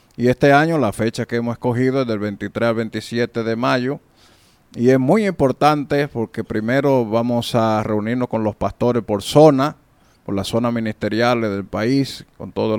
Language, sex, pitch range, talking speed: English, male, 110-130 Hz, 175 wpm